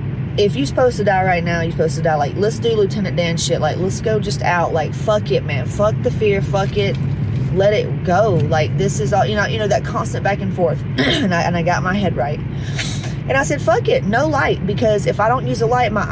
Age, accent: 20-39, American